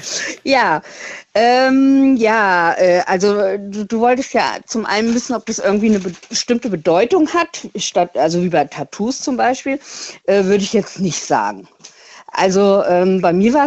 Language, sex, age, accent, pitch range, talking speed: German, female, 50-69, German, 180-235 Hz, 160 wpm